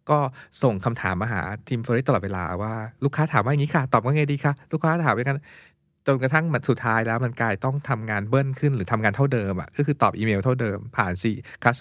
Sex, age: male, 20-39